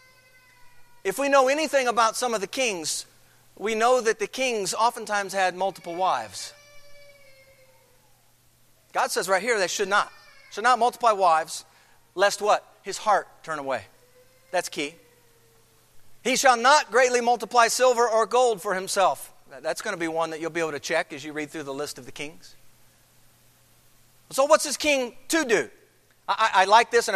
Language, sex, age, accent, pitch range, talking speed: English, male, 40-59, American, 170-270 Hz, 170 wpm